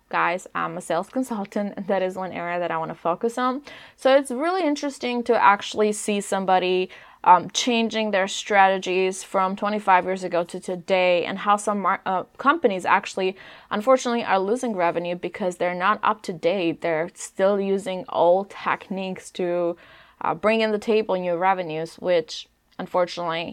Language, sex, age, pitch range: English, female, 20-39, 185-240 Hz